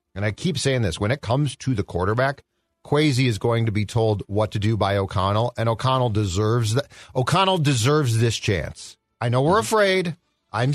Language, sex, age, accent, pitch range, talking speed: English, male, 40-59, American, 110-145 Hz, 195 wpm